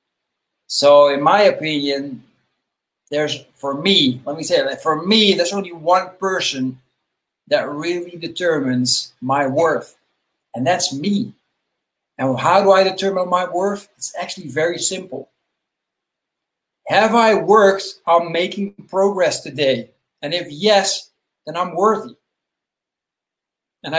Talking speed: 125 wpm